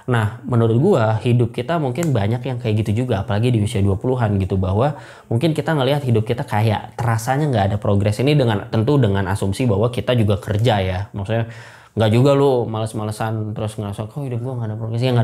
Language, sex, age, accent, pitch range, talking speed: Indonesian, male, 20-39, native, 100-120 Hz, 210 wpm